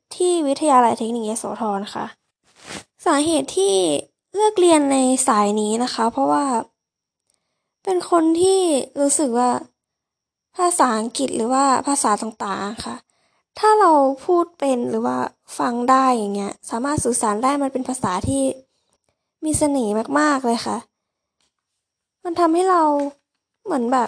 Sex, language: female, Thai